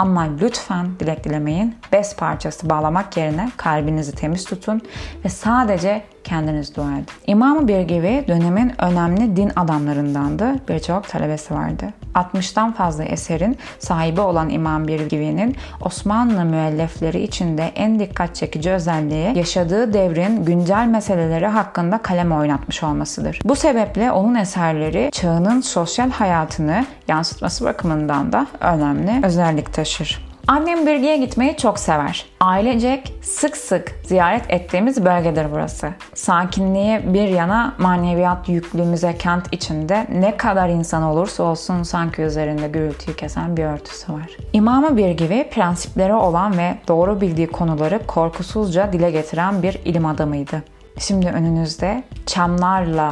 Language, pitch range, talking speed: Turkish, 160-205 Hz, 125 wpm